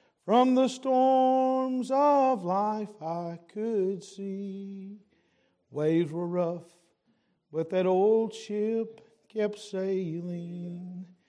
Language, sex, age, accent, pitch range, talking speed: English, male, 50-69, American, 175-230 Hz, 90 wpm